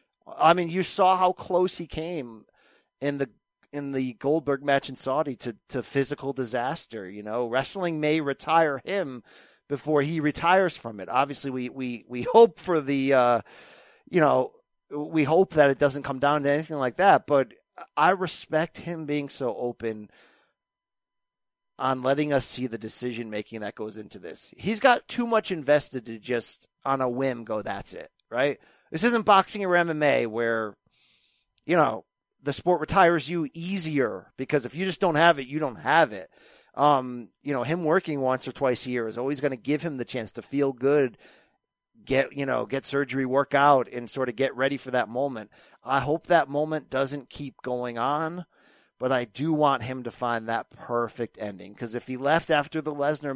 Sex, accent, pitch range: male, American, 125-155 Hz